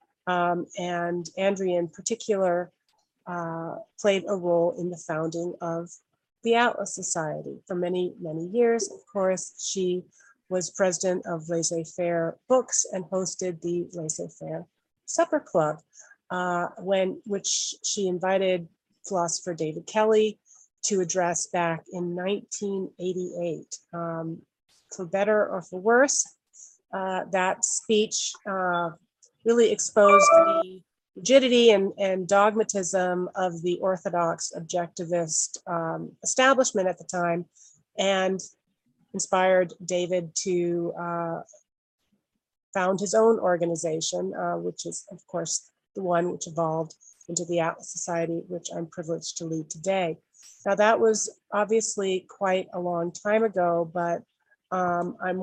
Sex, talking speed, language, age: female, 120 wpm, English, 30-49